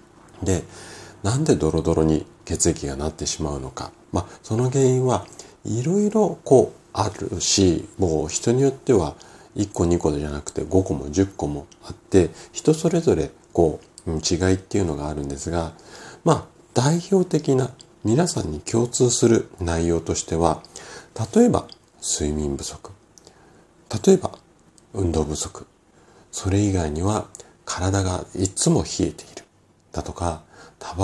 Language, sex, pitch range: Japanese, male, 80-125 Hz